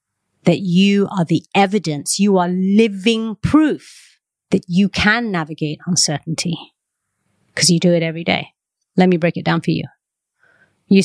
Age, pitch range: 30-49, 170-215 Hz